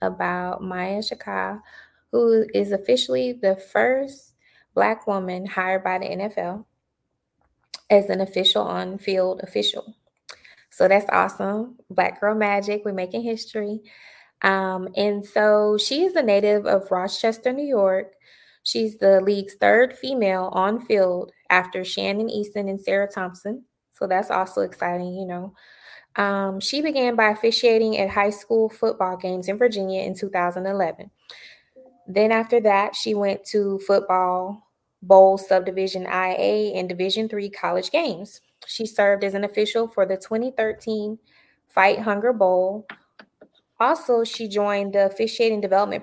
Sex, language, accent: female, English, American